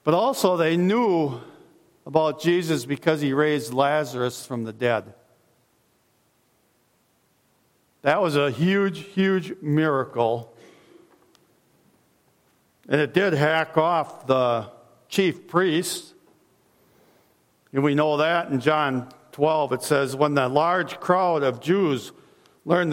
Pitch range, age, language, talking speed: 130-165 Hz, 50-69, English, 115 wpm